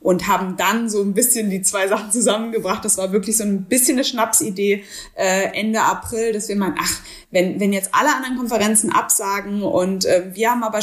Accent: German